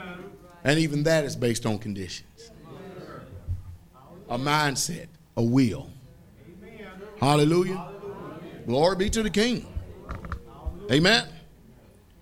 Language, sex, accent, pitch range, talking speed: English, male, American, 120-175 Hz, 90 wpm